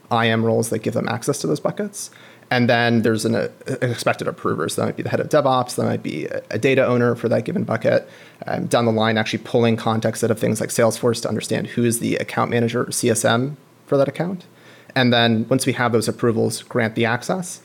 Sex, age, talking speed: male, 30-49, 235 wpm